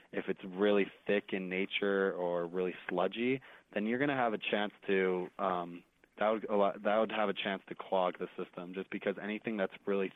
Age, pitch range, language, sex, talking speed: 20-39, 90-100 Hz, English, male, 205 wpm